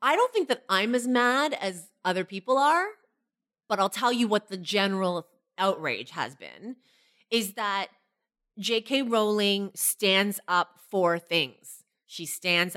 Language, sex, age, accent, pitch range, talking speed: English, female, 30-49, American, 170-215 Hz, 145 wpm